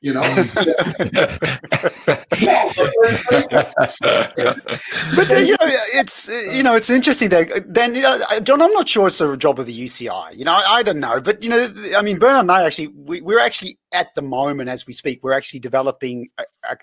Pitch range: 125-205 Hz